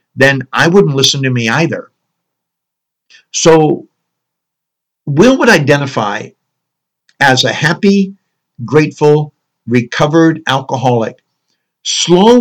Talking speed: 85 wpm